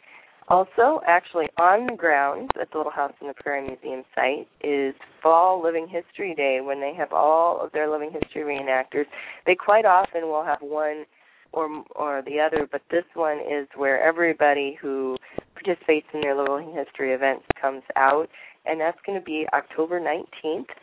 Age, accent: 30-49, American